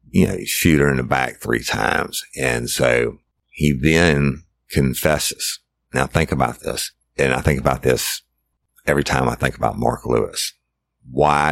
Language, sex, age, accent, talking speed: English, male, 50-69, American, 160 wpm